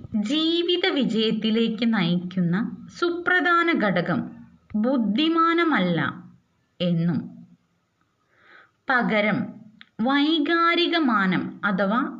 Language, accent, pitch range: Malayalam, native, 210-285 Hz